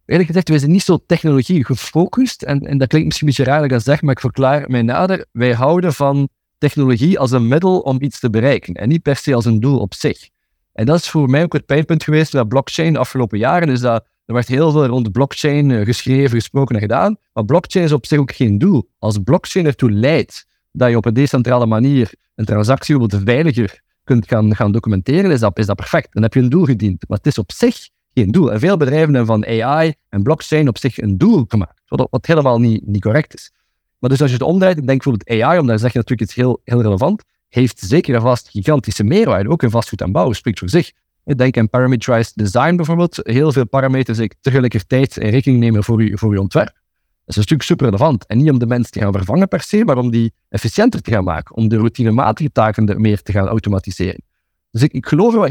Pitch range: 110-150 Hz